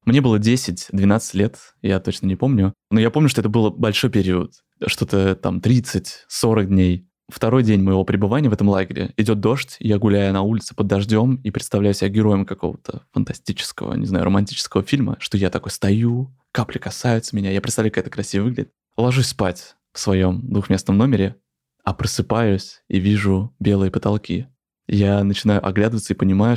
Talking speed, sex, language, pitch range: 170 wpm, male, Russian, 95-110 Hz